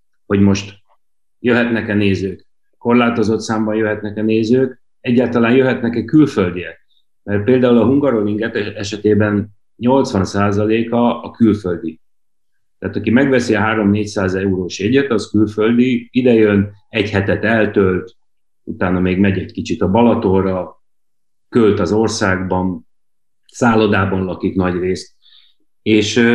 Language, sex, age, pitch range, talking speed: Hungarian, male, 30-49, 95-110 Hz, 105 wpm